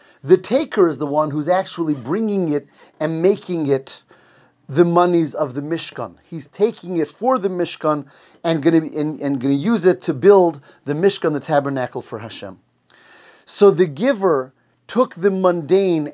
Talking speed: 170 wpm